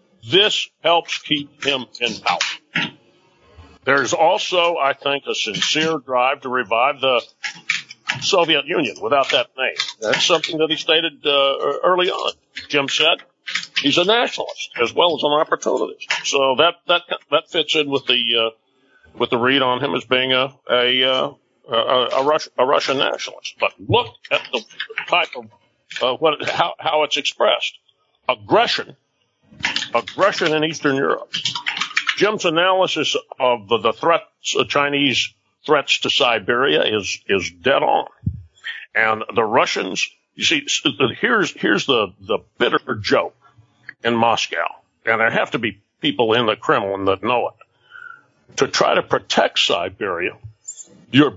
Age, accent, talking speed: 50-69, American, 150 wpm